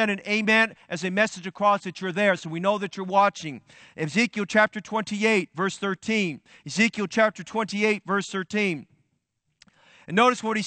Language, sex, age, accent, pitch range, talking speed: English, male, 40-59, American, 200-240 Hz, 165 wpm